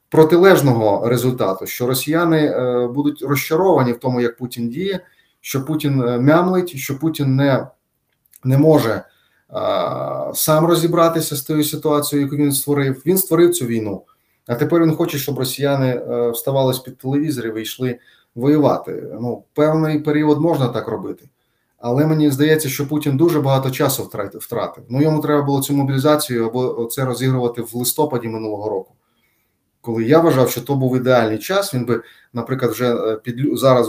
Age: 30-49